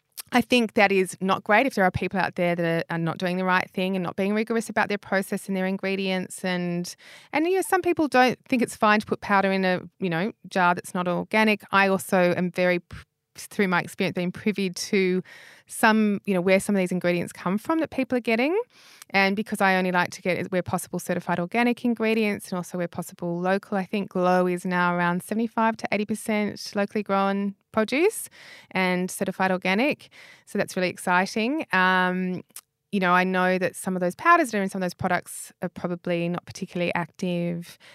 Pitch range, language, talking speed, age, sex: 175-215 Hz, English, 210 wpm, 20-39, female